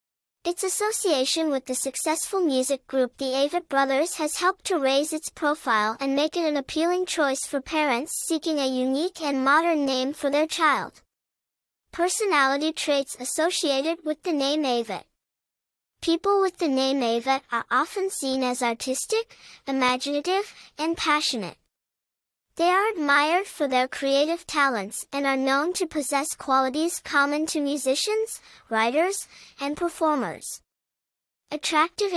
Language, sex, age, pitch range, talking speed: English, male, 10-29, 265-330 Hz, 135 wpm